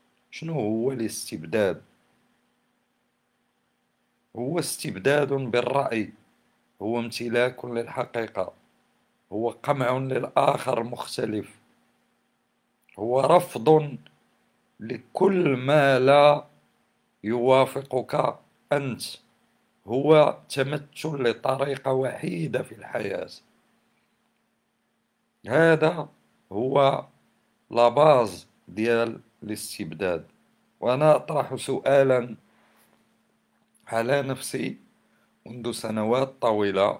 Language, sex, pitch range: Arabic, male, 100-130 Hz